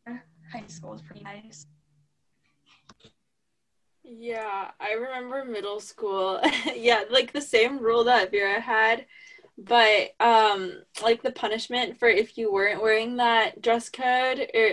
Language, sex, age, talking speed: English, female, 10-29, 130 wpm